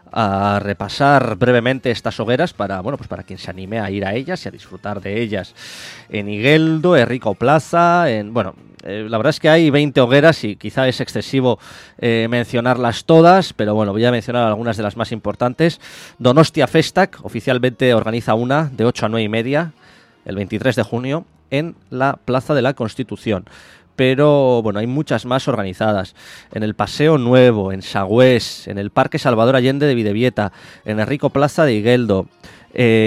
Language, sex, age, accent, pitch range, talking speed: English, male, 20-39, Spanish, 105-135 Hz, 180 wpm